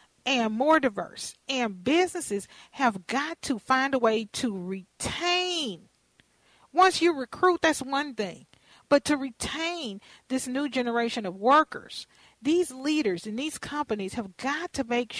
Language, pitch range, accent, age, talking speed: English, 205-275 Hz, American, 40-59, 140 wpm